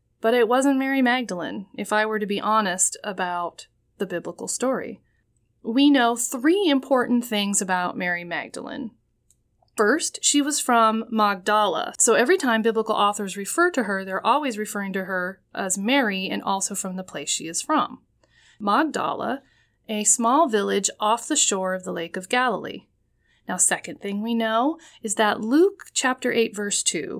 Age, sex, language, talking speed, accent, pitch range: 30-49, female, English, 165 wpm, American, 195-255 Hz